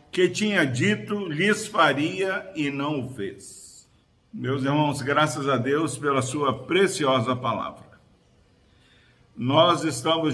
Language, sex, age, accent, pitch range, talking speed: Portuguese, male, 50-69, Brazilian, 130-165 Hz, 115 wpm